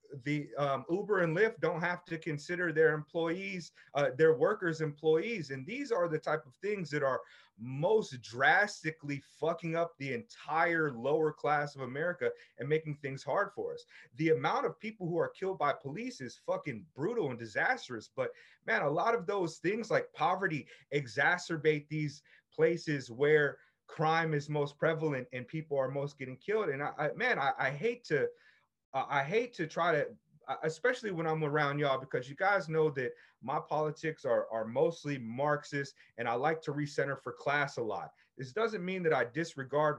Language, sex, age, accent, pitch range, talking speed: English, male, 30-49, American, 145-190 Hz, 180 wpm